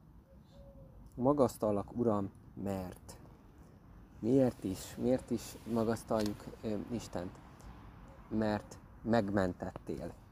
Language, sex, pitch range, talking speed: Hungarian, male, 100-115 Hz, 70 wpm